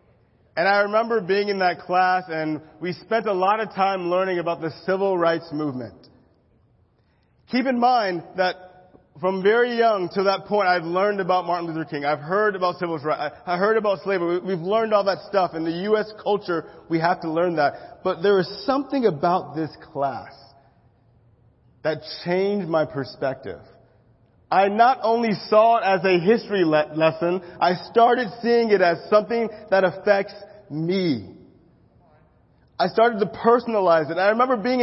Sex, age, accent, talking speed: male, 30-49, American, 165 wpm